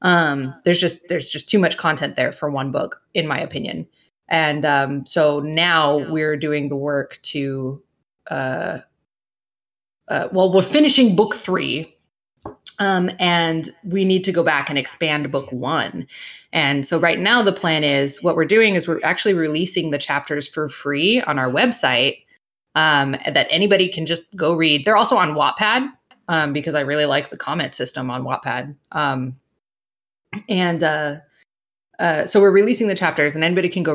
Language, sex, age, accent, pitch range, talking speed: English, female, 20-39, American, 140-180 Hz, 170 wpm